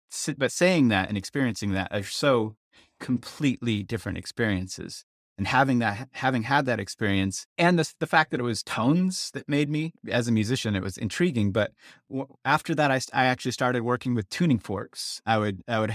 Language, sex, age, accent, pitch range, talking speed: English, male, 30-49, American, 100-125 Hz, 190 wpm